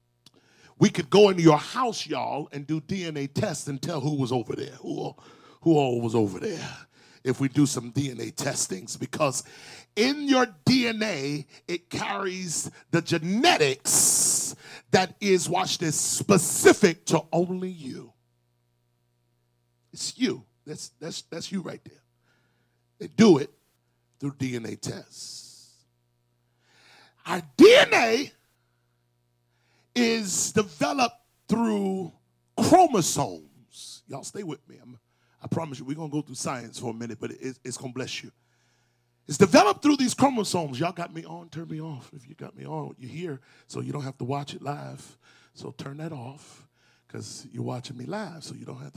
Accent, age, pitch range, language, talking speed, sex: American, 40-59, 120-175 Hz, English, 155 wpm, male